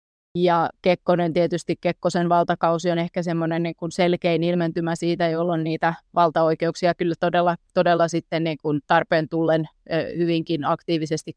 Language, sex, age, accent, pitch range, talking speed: Finnish, female, 30-49, native, 160-175 Hz, 115 wpm